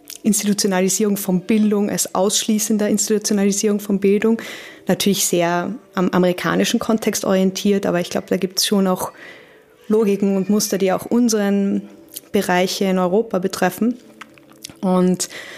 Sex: female